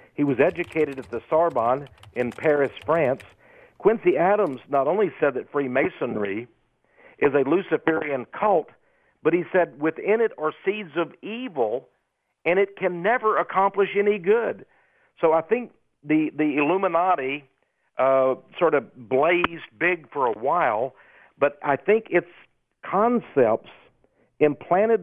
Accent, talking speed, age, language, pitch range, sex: American, 135 wpm, 50-69, English, 130-185 Hz, male